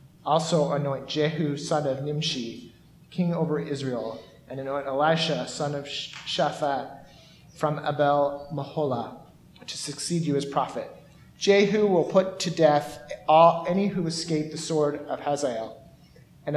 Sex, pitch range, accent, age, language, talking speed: male, 140-170 Hz, American, 30-49, English, 130 wpm